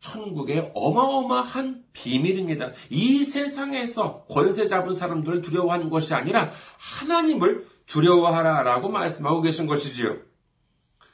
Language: Korean